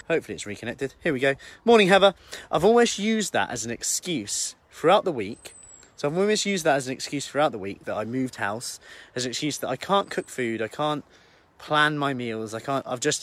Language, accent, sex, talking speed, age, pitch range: English, British, male, 225 wpm, 30-49, 105-150 Hz